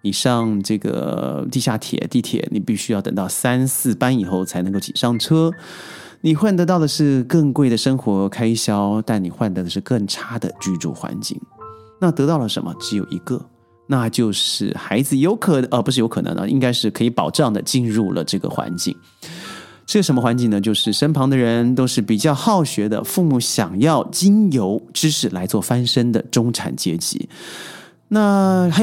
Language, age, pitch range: Chinese, 30-49, 110-150 Hz